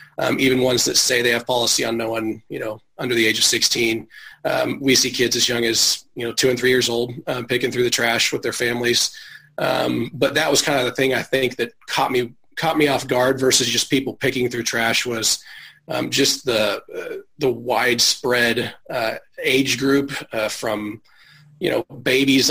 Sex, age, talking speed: male, 30-49, 210 wpm